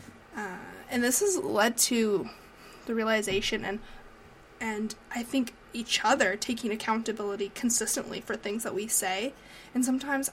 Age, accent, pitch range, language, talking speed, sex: 20-39, American, 205-245 Hz, English, 140 wpm, female